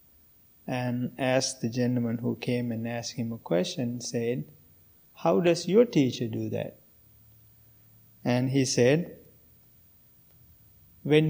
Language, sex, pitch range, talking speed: English, male, 115-140 Hz, 115 wpm